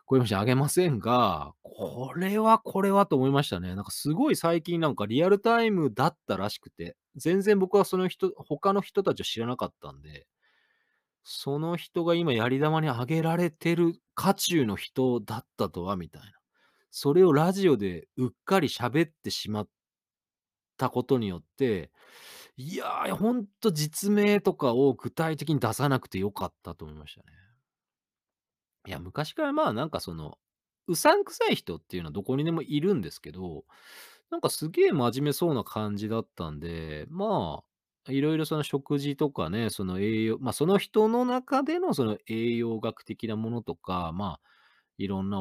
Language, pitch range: Japanese, 105-180 Hz